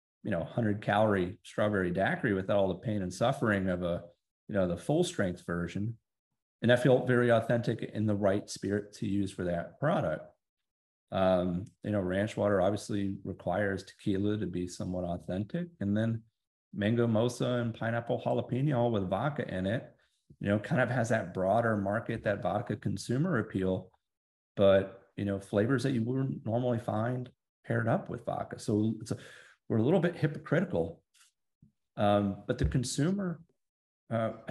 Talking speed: 165 wpm